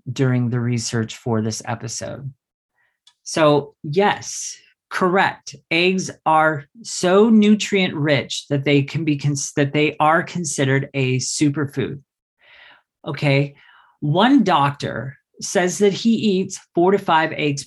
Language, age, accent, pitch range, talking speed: English, 40-59, American, 140-195 Hz, 120 wpm